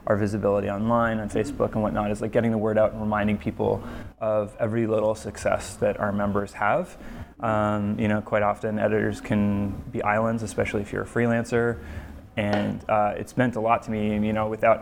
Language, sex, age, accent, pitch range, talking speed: English, male, 20-39, American, 105-115 Hz, 200 wpm